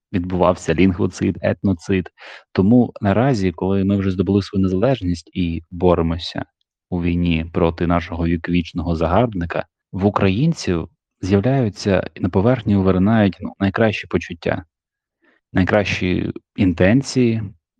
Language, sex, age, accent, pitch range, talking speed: Ukrainian, male, 20-39, native, 90-110 Hz, 105 wpm